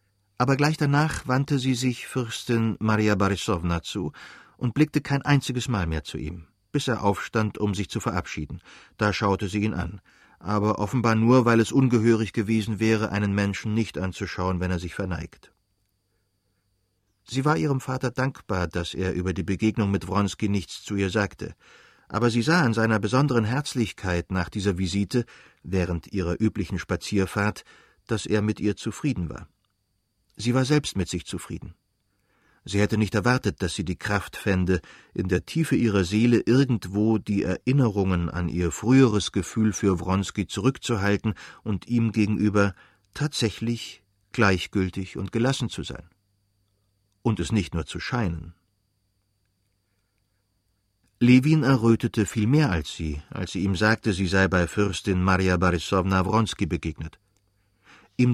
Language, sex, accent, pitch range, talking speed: English, male, German, 95-115 Hz, 150 wpm